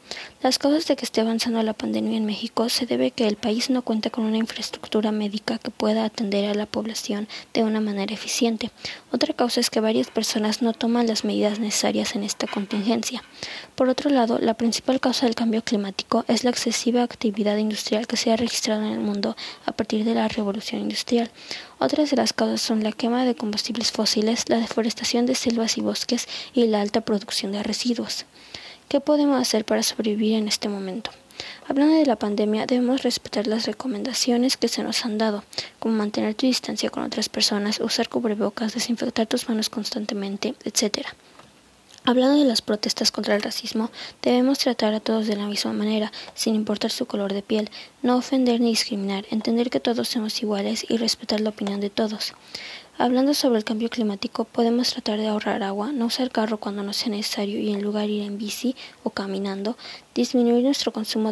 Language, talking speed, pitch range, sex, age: Spanish, 190 wpm, 215-245 Hz, female, 20-39